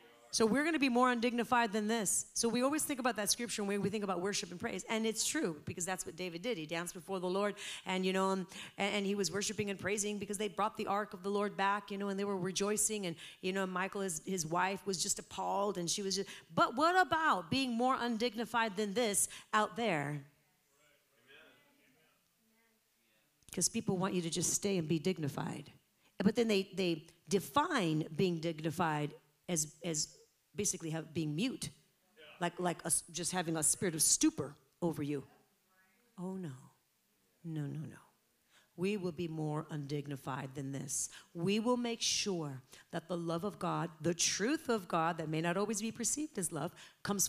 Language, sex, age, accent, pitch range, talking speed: English, female, 40-59, American, 175-245 Hz, 195 wpm